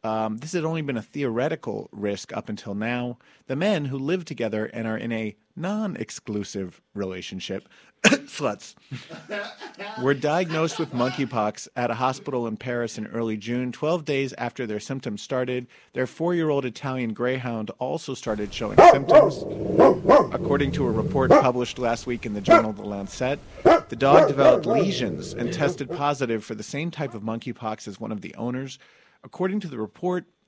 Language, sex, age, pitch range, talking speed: English, male, 40-59, 110-145 Hz, 165 wpm